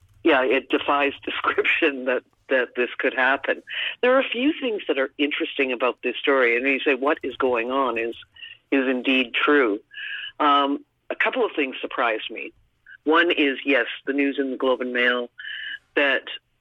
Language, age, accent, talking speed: English, 50-69, American, 175 wpm